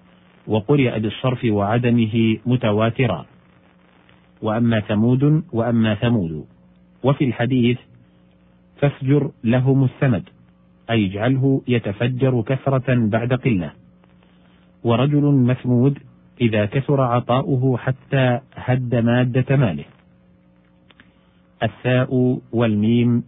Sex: male